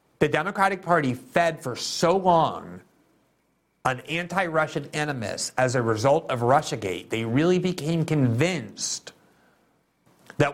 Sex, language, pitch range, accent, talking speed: male, English, 130-165 Hz, American, 115 wpm